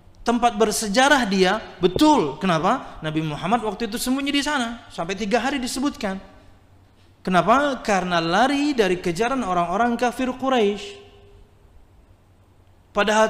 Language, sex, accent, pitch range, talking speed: Indonesian, male, native, 155-250 Hz, 115 wpm